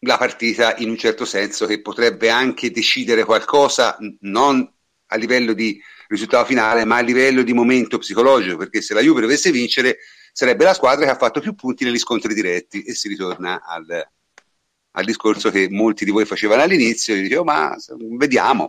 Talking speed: 180 wpm